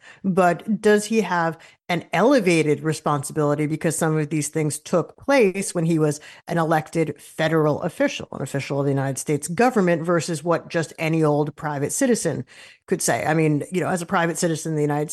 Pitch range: 150-190 Hz